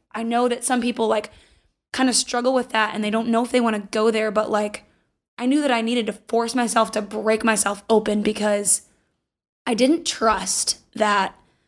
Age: 20-39